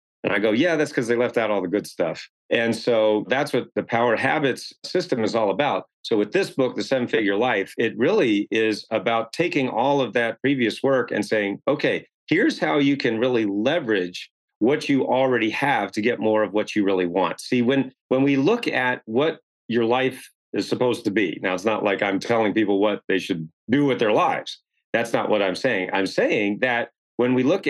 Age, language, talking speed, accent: 40-59, English, 220 wpm, American